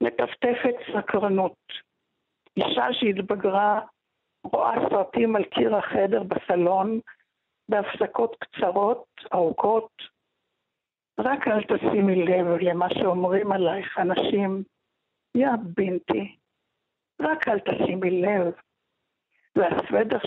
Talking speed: 85 wpm